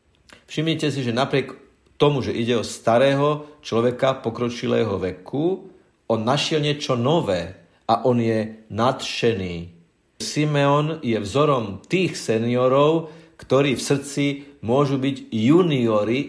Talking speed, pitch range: 115 wpm, 115-145 Hz